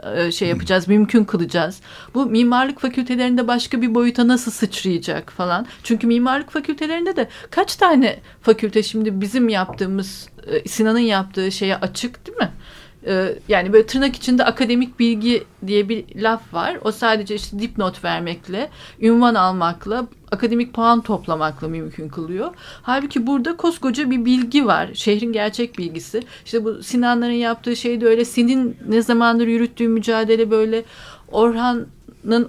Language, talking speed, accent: Turkish, 135 wpm, native